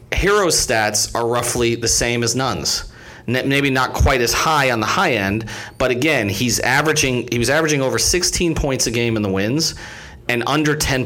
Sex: male